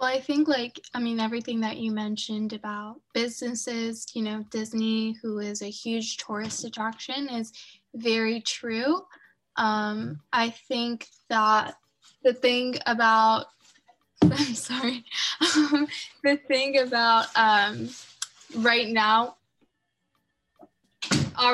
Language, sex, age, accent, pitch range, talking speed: English, female, 10-29, American, 220-255 Hz, 115 wpm